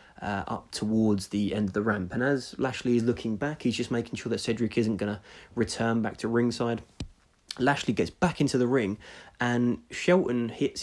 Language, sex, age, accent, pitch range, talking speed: English, male, 20-39, British, 100-120 Hz, 200 wpm